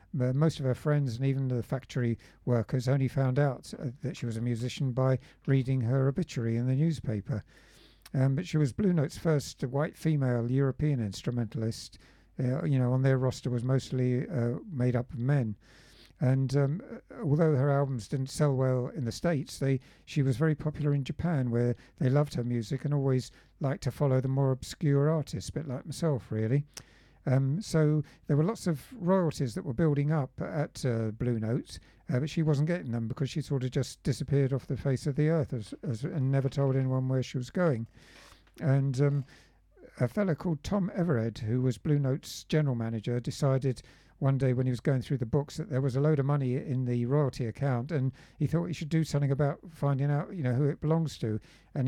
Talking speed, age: 205 wpm, 50-69